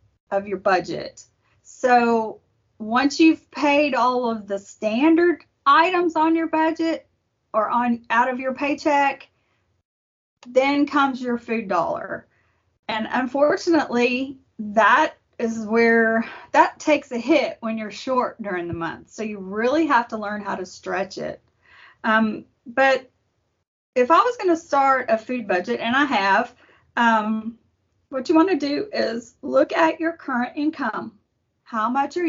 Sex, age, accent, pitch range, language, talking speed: female, 30-49, American, 210-280 Hz, English, 145 wpm